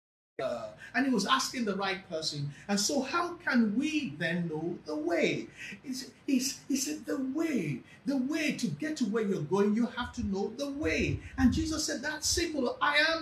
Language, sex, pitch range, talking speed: English, male, 175-260 Hz, 190 wpm